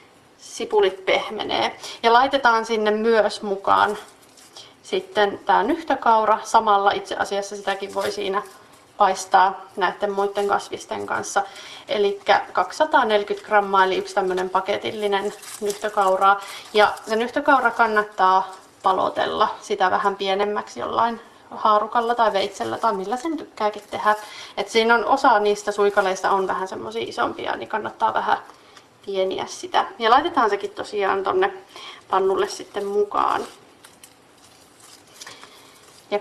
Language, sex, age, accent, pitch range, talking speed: Finnish, female, 30-49, native, 195-235 Hz, 115 wpm